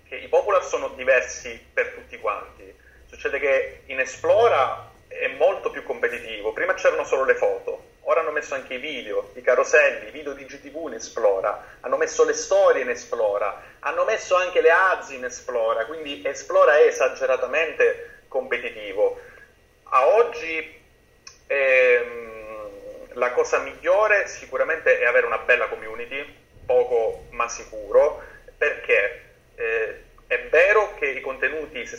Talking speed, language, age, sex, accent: 145 wpm, Italian, 30-49, male, native